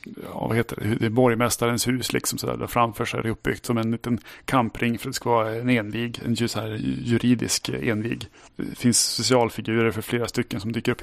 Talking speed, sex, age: 220 wpm, male, 30-49